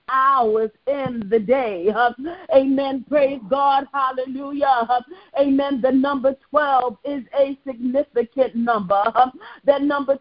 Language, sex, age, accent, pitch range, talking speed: English, female, 50-69, American, 265-290 Hz, 105 wpm